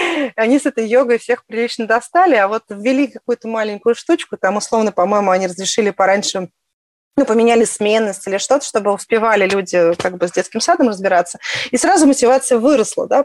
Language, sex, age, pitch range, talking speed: Russian, female, 30-49, 200-255 Hz, 170 wpm